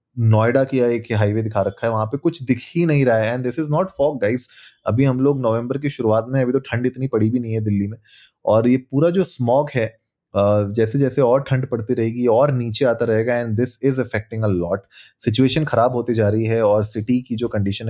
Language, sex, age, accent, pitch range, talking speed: Hindi, male, 20-39, native, 105-130 Hz, 240 wpm